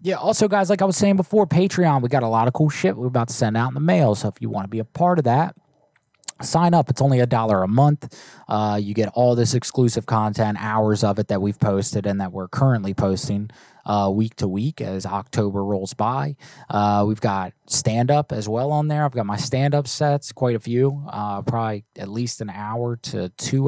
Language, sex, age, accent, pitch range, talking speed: English, male, 20-39, American, 105-140 Hz, 235 wpm